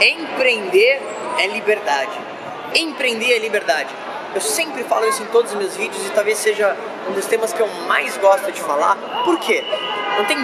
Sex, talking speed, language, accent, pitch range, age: male, 180 wpm, Portuguese, Brazilian, 225-345 Hz, 20-39